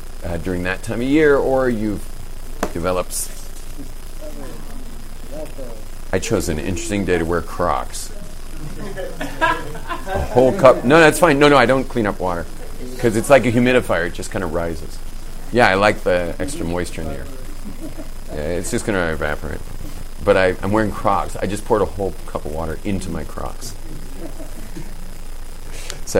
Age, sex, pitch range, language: 40-59, male, 85-110 Hz, English